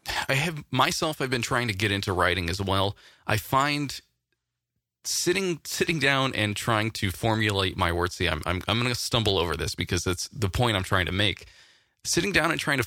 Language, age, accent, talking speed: English, 20-39, American, 210 wpm